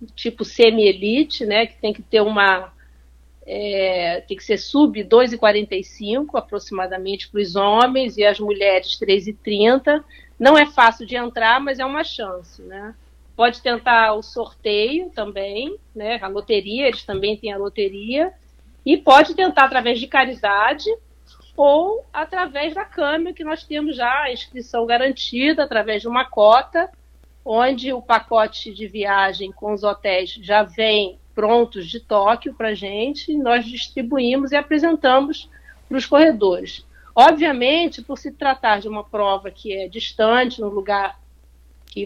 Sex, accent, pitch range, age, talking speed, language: female, Brazilian, 205-270 Hz, 40-59, 145 wpm, Portuguese